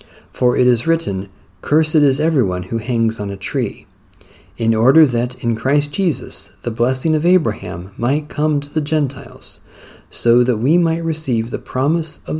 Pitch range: 95-135 Hz